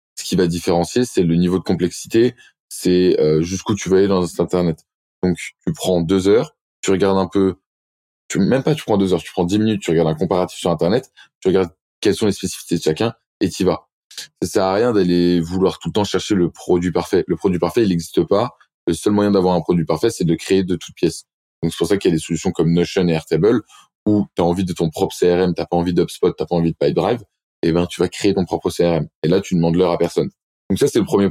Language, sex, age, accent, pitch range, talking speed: French, male, 20-39, French, 85-100 Hz, 265 wpm